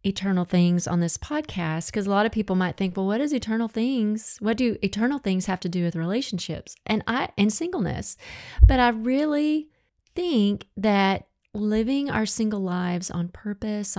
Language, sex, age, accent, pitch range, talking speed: English, female, 30-49, American, 180-225 Hz, 175 wpm